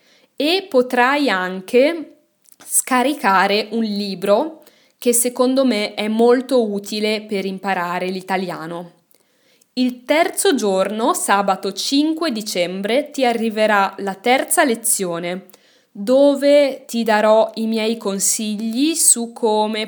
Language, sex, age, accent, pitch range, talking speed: Italian, female, 20-39, native, 195-250 Hz, 105 wpm